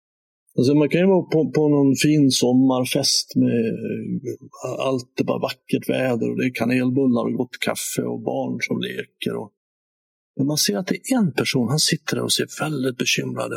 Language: English